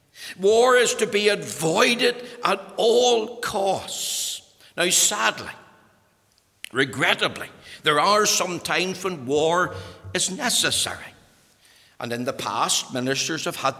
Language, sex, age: English, male, 60-79